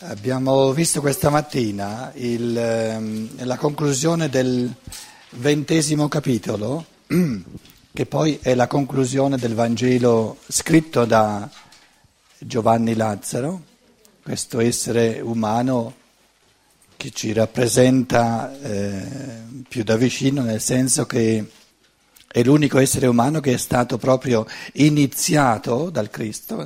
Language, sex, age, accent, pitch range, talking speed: Italian, male, 50-69, native, 115-145 Hz, 100 wpm